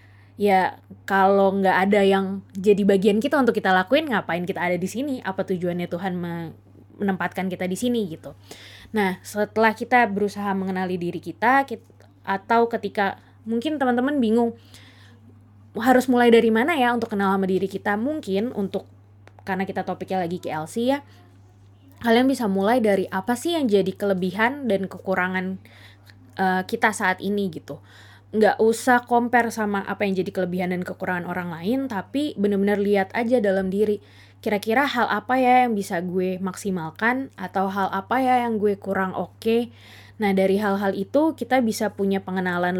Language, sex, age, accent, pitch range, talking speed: Indonesian, female, 20-39, native, 185-225 Hz, 160 wpm